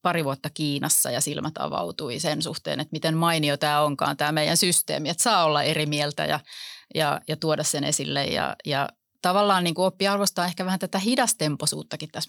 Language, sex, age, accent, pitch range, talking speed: Finnish, female, 30-49, native, 150-175 Hz, 185 wpm